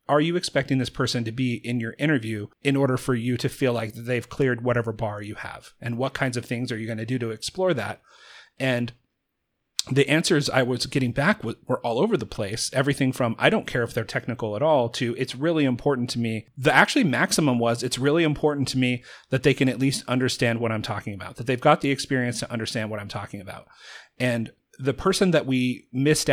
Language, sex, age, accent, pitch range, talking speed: English, male, 30-49, American, 120-145 Hz, 230 wpm